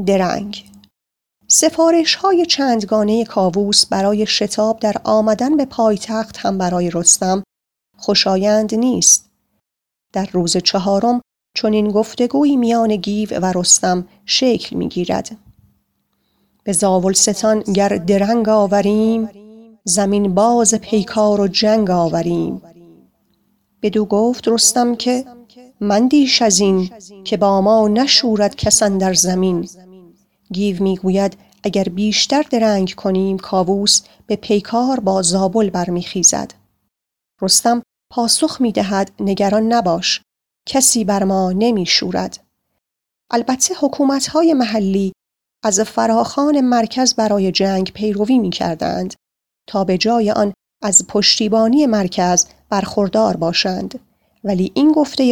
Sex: female